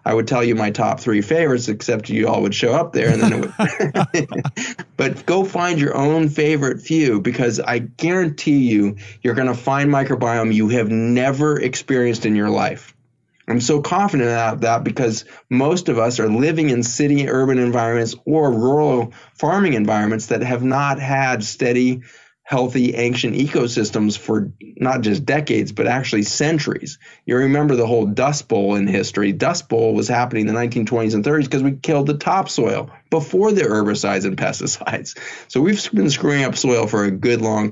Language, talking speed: English, 180 wpm